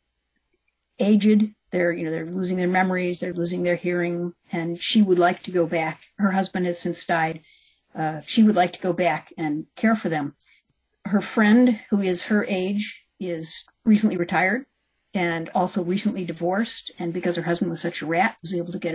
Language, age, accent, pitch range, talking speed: English, 50-69, American, 170-205 Hz, 190 wpm